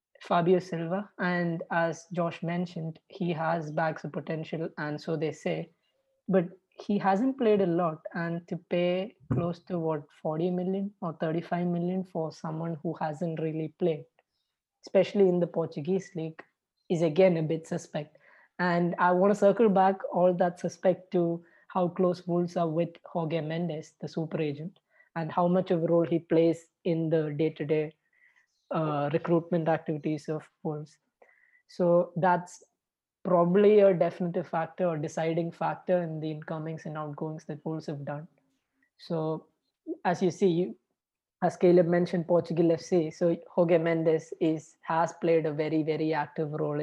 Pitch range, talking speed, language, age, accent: 160-180 Hz, 160 wpm, English, 20-39, Indian